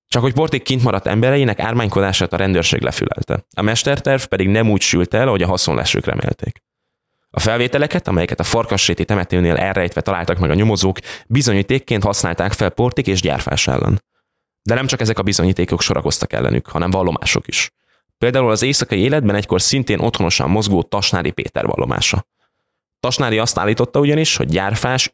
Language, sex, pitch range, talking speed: Hungarian, male, 95-125 Hz, 160 wpm